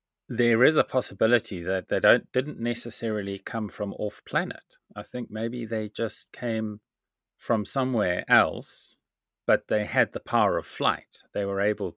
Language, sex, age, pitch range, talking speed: English, male, 30-49, 90-115 Hz, 160 wpm